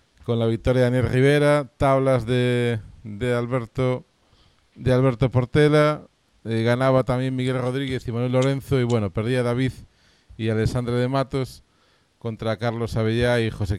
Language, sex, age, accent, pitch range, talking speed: English, male, 40-59, Spanish, 110-130 Hz, 150 wpm